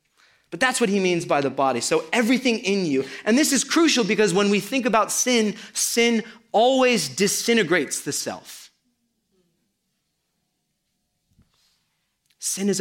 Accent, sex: American, male